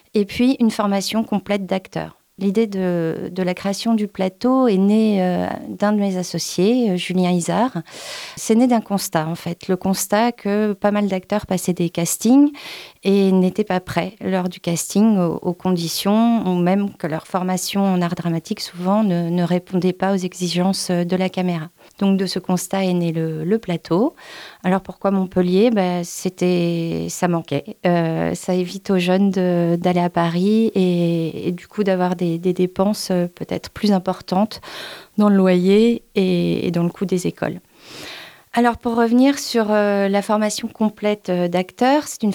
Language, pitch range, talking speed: French, 180-210 Hz, 170 wpm